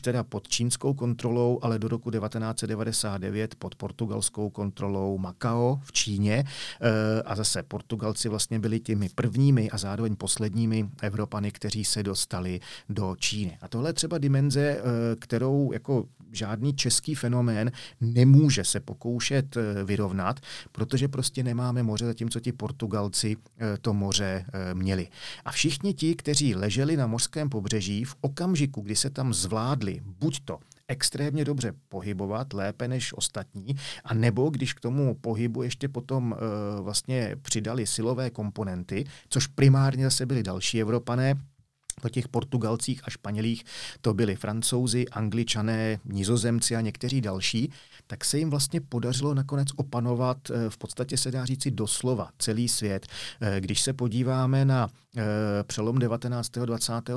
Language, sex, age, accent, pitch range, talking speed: Czech, male, 40-59, native, 105-130 Hz, 135 wpm